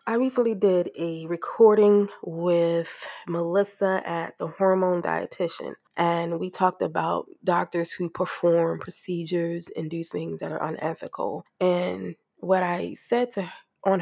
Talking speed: 135 wpm